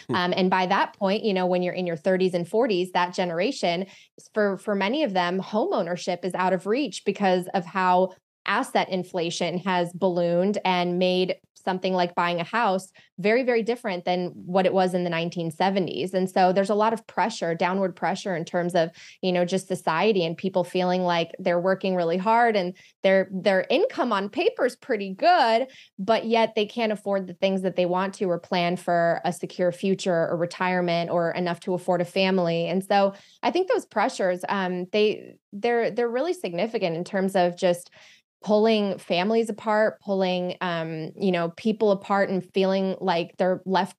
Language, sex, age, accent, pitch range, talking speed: English, female, 20-39, American, 180-205 Hz, 190 wpm